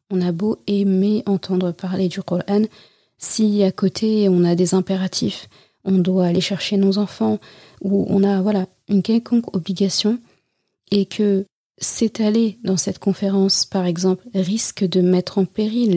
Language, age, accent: French, 30-49, French